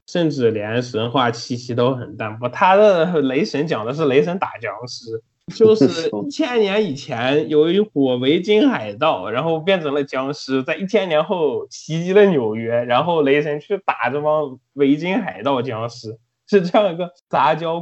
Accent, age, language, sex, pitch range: native, 20-39, Chinese, male, 125-190 Hz